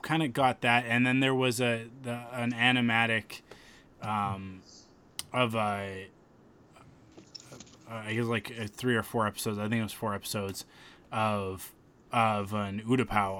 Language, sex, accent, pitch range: English, male, American, 105-125 Hz